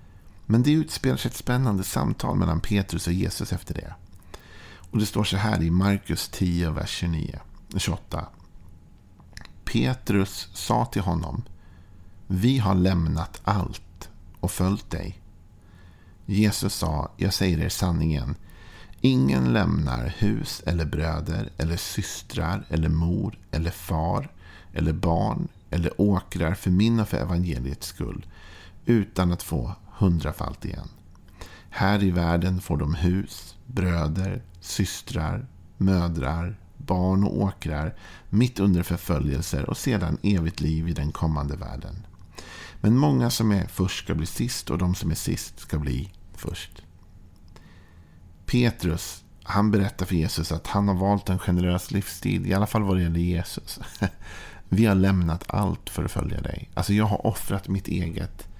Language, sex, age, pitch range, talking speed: Swedish, male, 50-69, 85-100 Hz, 140 wpm